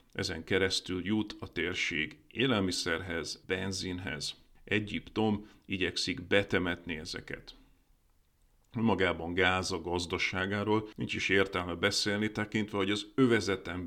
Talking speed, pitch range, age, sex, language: 100 wpm, 95-110 Hz, 40-59, male, Hungarian